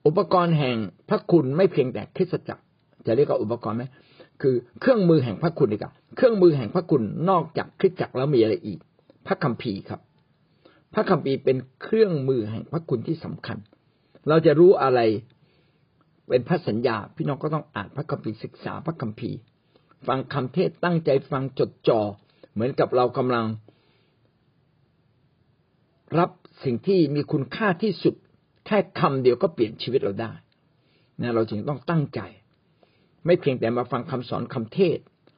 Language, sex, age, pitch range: Thai, male, 60-79, 125-170 Hz